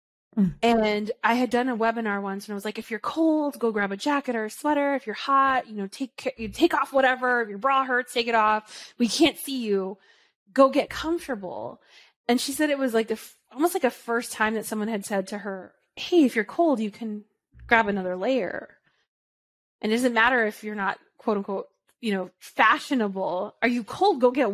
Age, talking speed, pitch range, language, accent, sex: 20-39, 220 wpm, 210-275 Hz, English, American, female